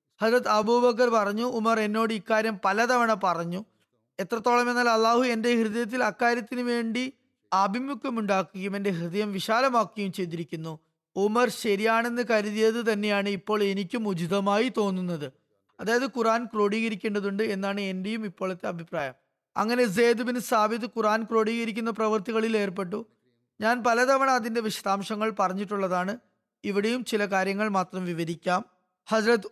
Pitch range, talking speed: 195-235 Hz, 110 wpm